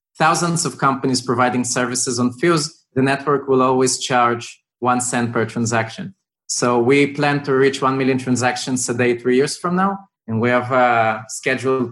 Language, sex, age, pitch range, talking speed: English, male, 20-39, 120-135 Hz, 175 wpm